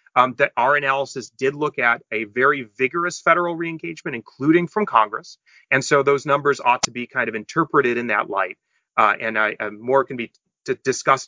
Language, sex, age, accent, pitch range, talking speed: English, male, 30-49, American, 120-165 Hz, 190 wpm